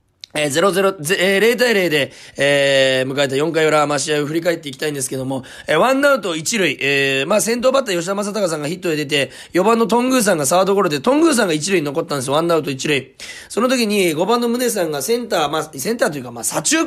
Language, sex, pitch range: Japanese, male, 155-230 Hz